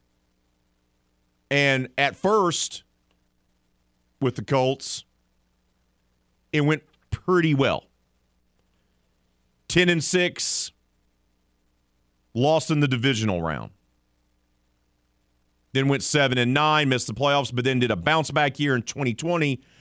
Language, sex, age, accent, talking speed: English, male, 40-59, American, 105 wpm